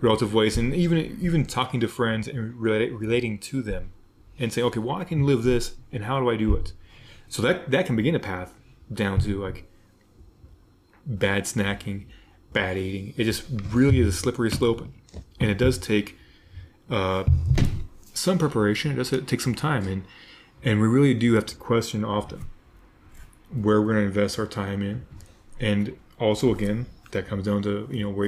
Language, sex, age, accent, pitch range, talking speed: English, male, 30-49, American, 100-120 Hz, 185 wpm